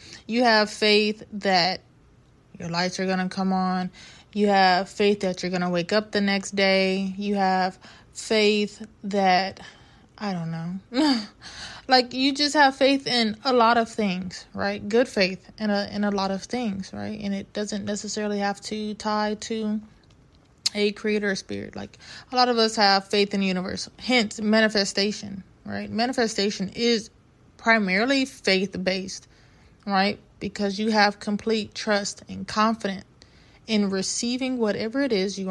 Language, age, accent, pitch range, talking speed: English, 20-39, American, 190-220 Hz, 155 wpm